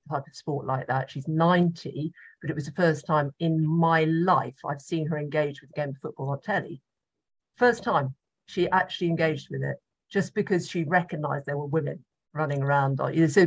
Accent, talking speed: British, 200 wpm